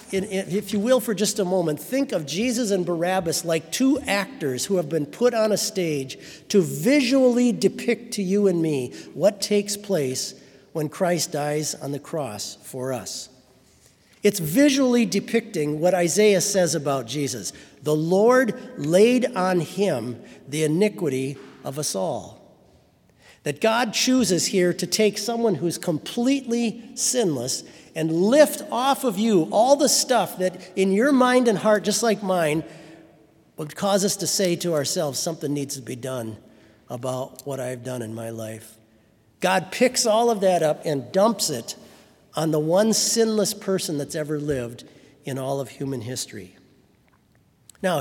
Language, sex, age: English, male, 50-69